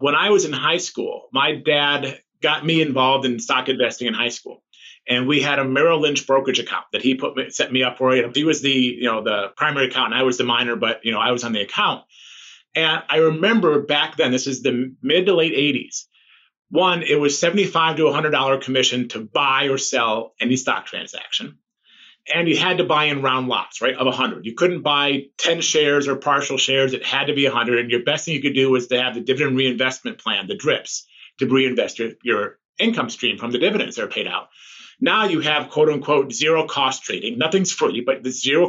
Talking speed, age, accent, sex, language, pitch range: 225 wpm, 30-49, American, male, English, 130-160 Hz